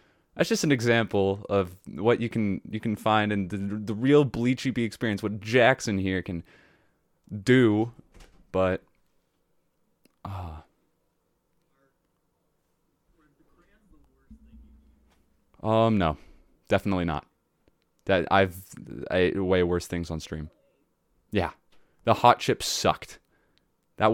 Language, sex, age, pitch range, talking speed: English, male, 20-39, 90-115 Hz, 105 wpm